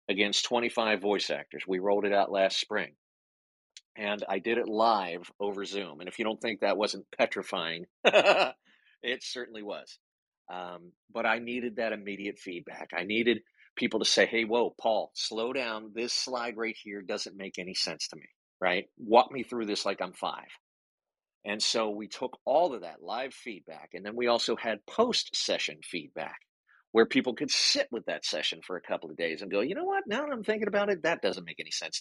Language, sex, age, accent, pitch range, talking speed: English, male, 50-69, American, 100-125 Hz, 200 wpm